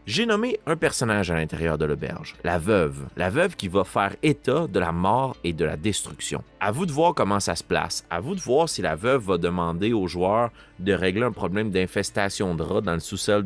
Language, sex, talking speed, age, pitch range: French, male, 230 wpm, 30-49, 85-125 Hz